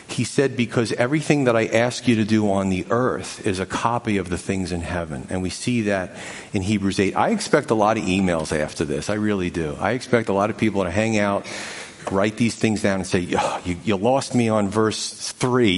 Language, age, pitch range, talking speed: English, 40-59, 100-125 Hz, 235 wpm